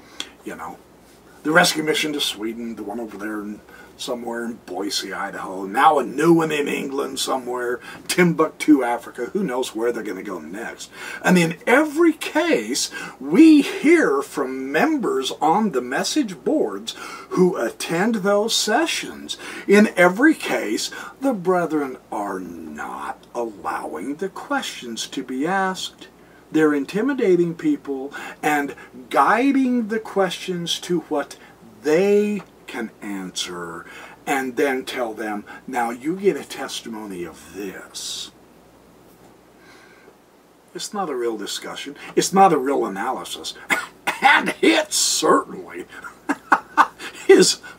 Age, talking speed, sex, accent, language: 50-69, 125 wpm, male, American, English